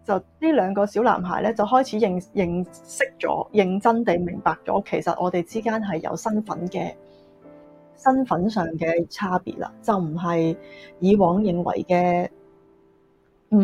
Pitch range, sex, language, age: 175-245 Hz, female, Chinese, 20-39